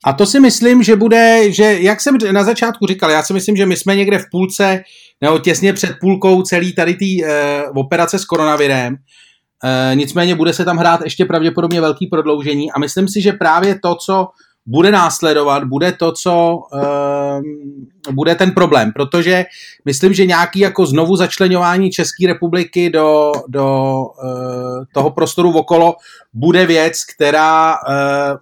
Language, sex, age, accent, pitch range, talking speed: Czech, male, 30-49, native, 140-185 Hz, 165 wpm